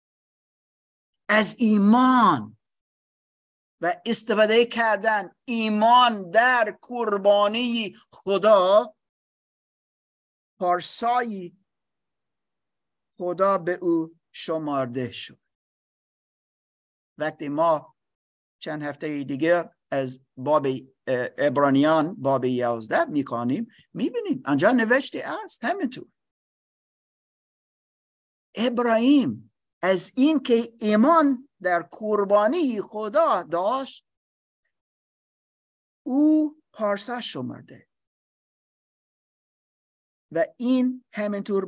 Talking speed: 70 wpm